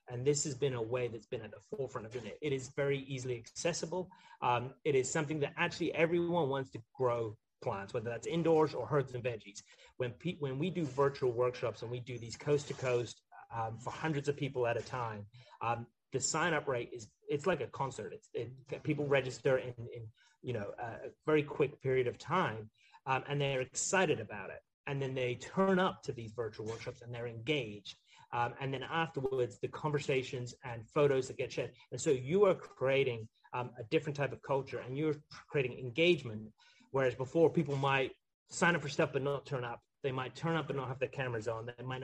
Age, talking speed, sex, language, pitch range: 30-49, 210 wpm, male, English, 120-145 Hz